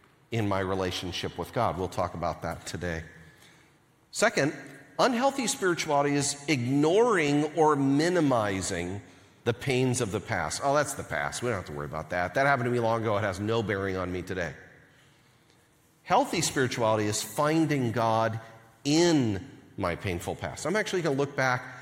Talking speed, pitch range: 165 wpm, 100-145 Hz